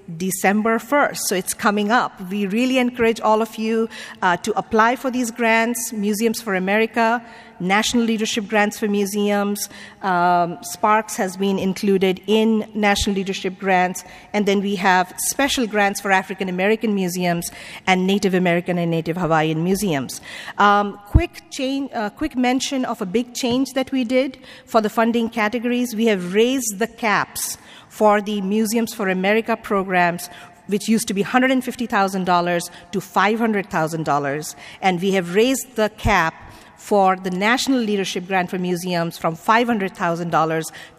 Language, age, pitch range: English, 50-69, 190-230 Hz